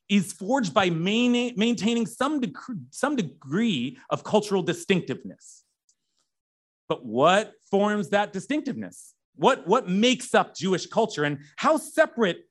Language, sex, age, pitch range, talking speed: English, male, 30-49, 170-250 Hz, 110 wpm